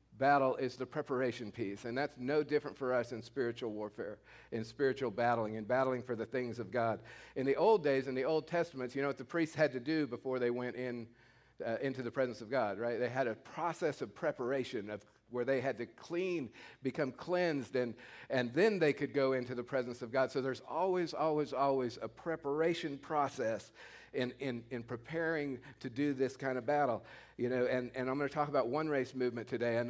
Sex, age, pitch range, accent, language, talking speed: male, 50-69, 125-155 Hz, American, English, 215 wpm